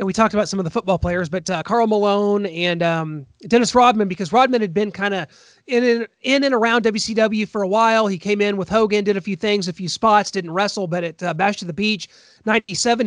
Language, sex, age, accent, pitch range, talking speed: English, male, 30-49, American, 190-235 Hz, 250 wpm